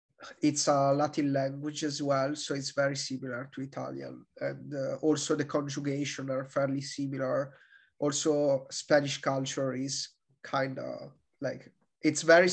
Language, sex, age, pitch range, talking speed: English, male, 30-49, 140-150 Hz, 140 wpm